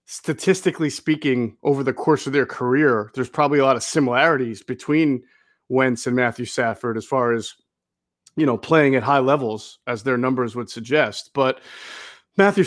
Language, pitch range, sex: English, 130-160 Hz, male